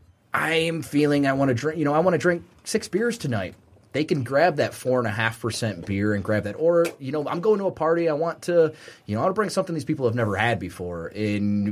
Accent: American